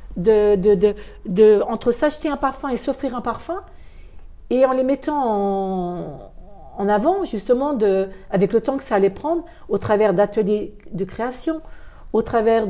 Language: French